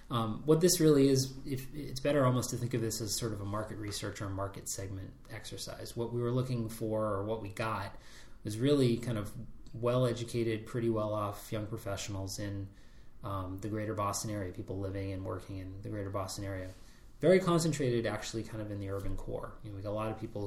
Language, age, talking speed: English, 20-39, 215 wpm